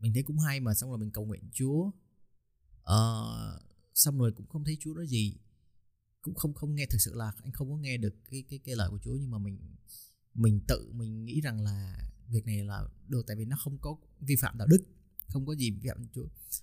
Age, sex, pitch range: 20-39, male, 100-135 Hz